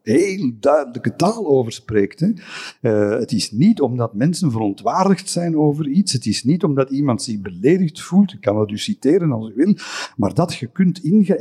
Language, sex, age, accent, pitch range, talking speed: English, male, 50-69, Belgian, 115-160 Hz, 195 wpm